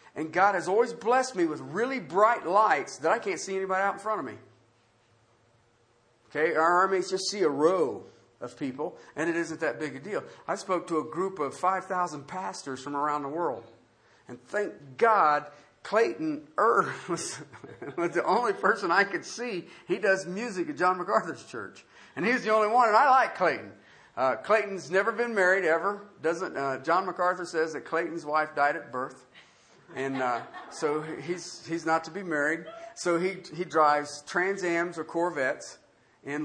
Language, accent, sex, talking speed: English, American, male, 185 wpm